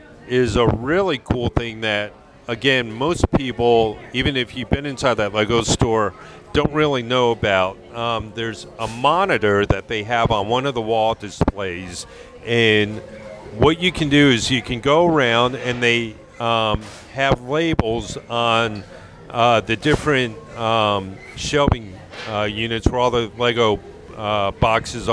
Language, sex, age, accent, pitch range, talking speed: English, male, 40-59, American, 110-130 Hz, 150 wpm